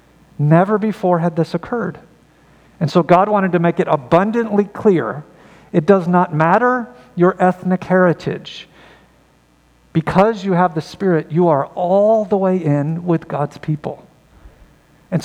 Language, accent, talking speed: English, American, 140 wpm